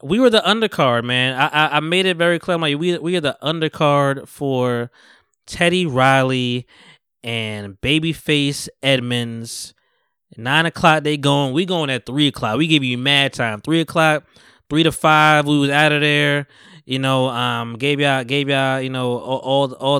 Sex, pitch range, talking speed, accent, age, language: male, 130-170 Hz, 180 wpm, American, 20-39, English